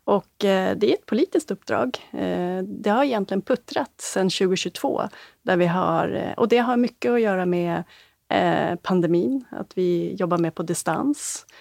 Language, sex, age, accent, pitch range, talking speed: Swedish, female, 30-49, native, 175-220 Hz, 150 wpm